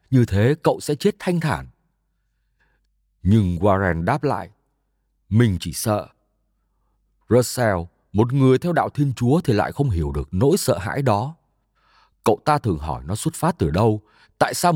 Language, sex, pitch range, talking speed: Vietnamese, male, 95-140 Hz, 165 wpm